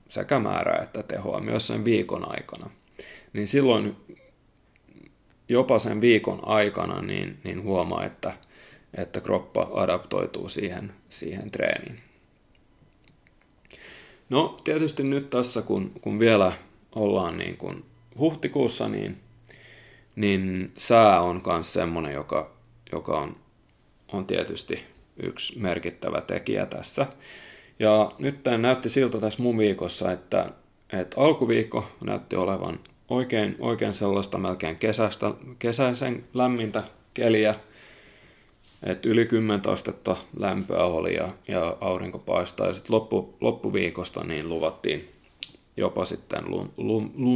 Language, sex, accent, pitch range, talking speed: Finnish, male, native, 100-125 Hz, 115 wpm